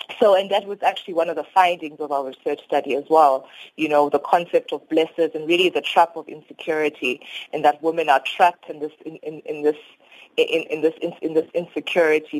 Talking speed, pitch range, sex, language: 220 wpm, 150-180 Hz, female, English